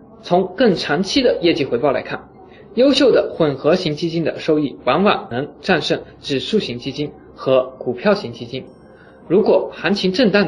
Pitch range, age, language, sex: 145-215 Hz, 20-39, Chinese, male